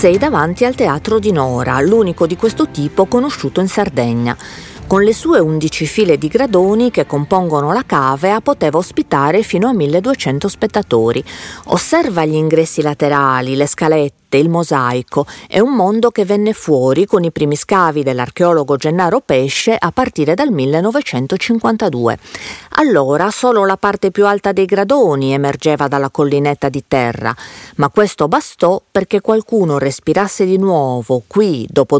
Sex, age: female, 40-59